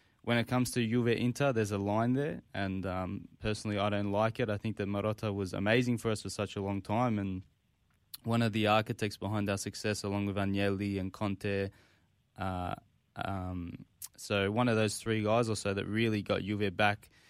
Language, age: English, 20-39